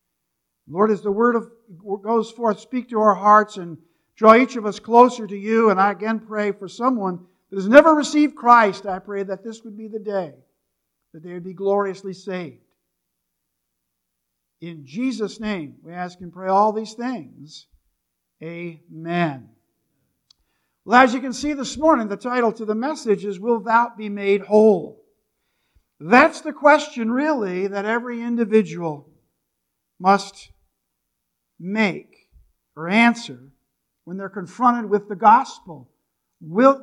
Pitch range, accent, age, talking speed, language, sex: 190-230 Hz, American, 50-69, 150 wpm, English, male